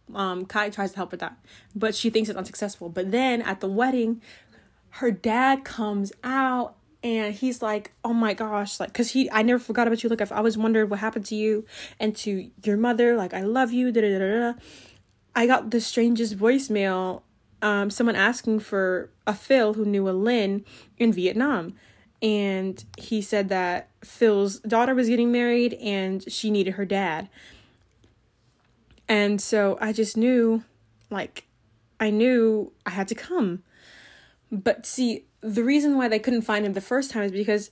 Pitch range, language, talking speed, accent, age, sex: 195-235 Hz, English, 175 wpm, American, 20-39, female